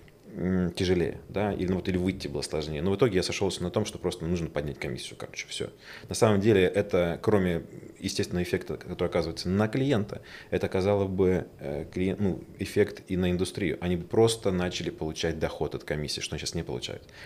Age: 30-49